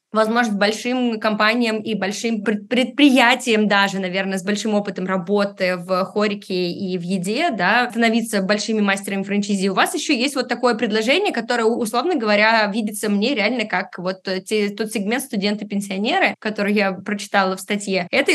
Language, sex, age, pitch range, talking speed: Russian, female, 20-39, 210-270 Hz, 155 wpm